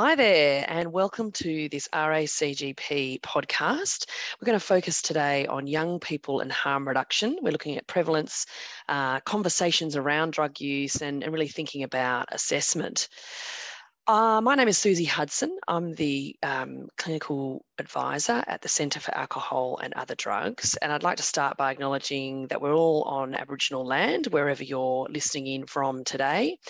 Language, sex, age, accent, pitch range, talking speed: English, female, 30-49, Australian, 145-215 Hz, 160 wpm